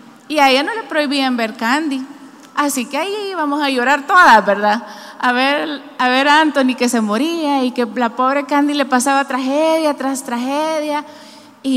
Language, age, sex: Spanish, 30-49, female